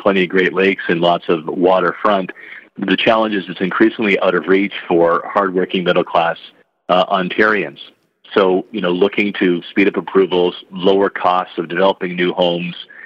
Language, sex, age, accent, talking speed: English, male, 50-69, American, 160 wpm